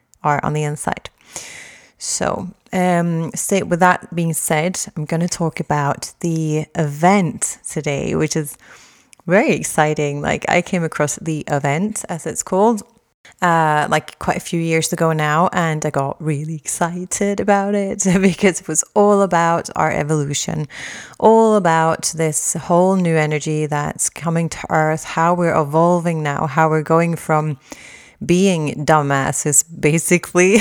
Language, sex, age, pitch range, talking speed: English, female, 30-49, 150-185 Hz, 145 wpm